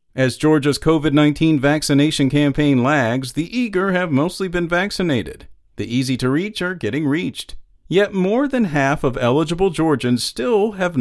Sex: male